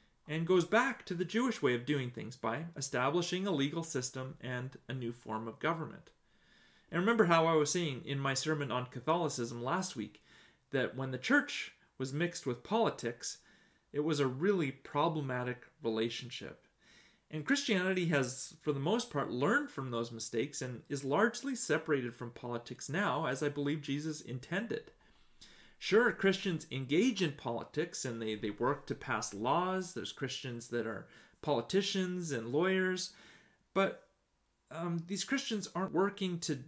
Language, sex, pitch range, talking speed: English, male, 130-180 Hz, 160 wpm